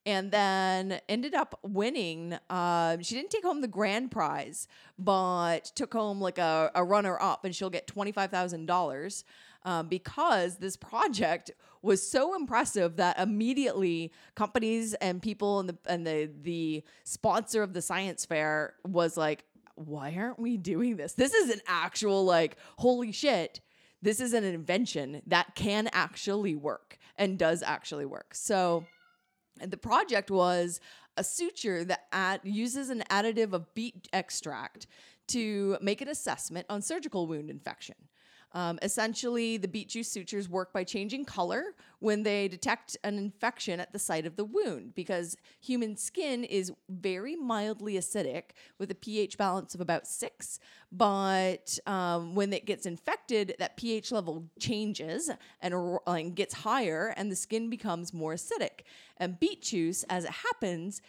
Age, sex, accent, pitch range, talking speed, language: 20-39, female, American, 175-225 Hz, 155 wpm, English